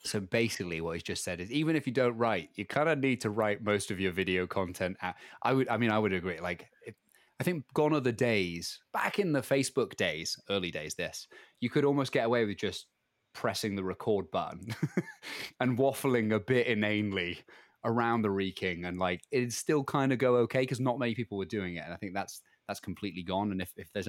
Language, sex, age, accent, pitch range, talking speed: English, male, 20-39, British, 95-125 Hz, 225 wpm